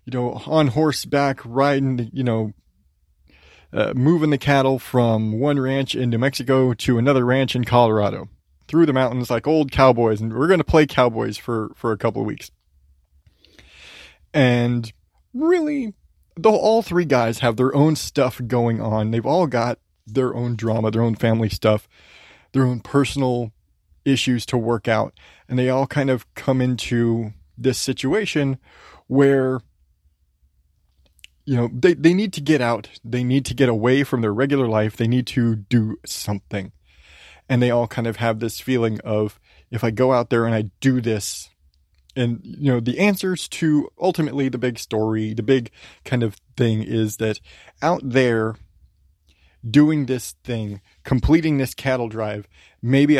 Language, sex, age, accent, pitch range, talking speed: English, male, 30-49, American, 105-135 Hz, 165 wpm